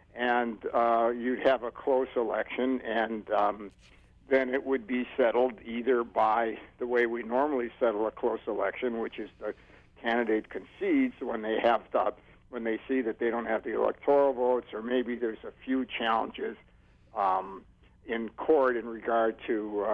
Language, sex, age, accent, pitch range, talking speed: English, male, 60-79, American, 115-135 Hz, 170 wpm